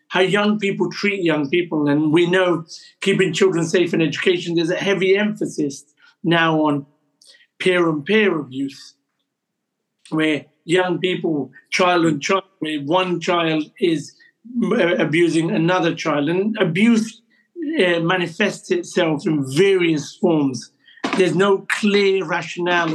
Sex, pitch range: male, 160-195 Hz